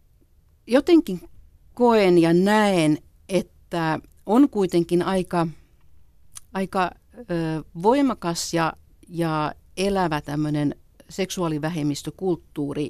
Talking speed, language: 65 wpm, Finnish